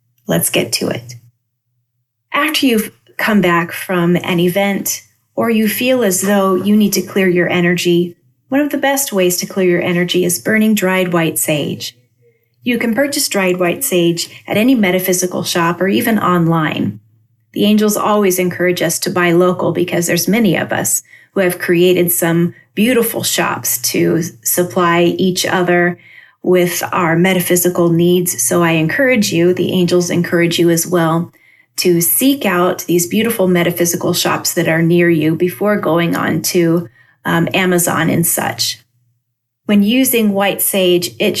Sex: female